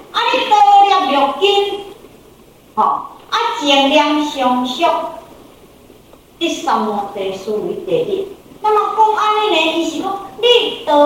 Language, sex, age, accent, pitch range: Chinese, female, 50-69, American, 285-420 Hz